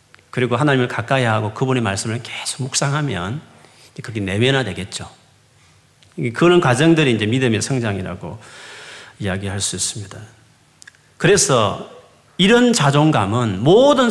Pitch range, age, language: 115-165 Hz, 40-59, Korean